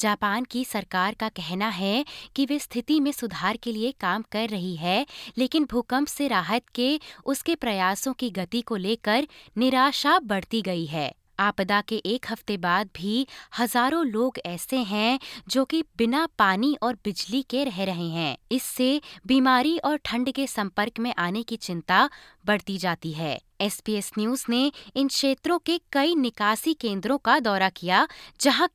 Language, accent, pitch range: Hindi, native, 185-275 Hz